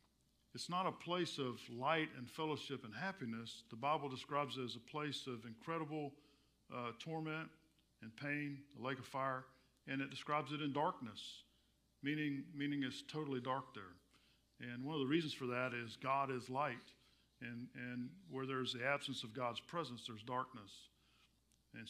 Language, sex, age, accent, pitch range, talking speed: English, male, 50-69, American, 120-150 Hz, 170 wpm